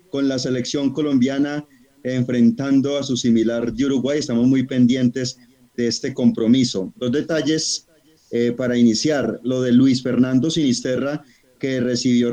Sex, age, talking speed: male, 30-49, 140 wpm